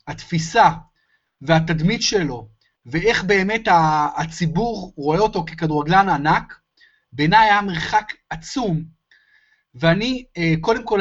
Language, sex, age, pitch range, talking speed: Hebrew, male, 30-49, 160-220 Hz, 95 wpm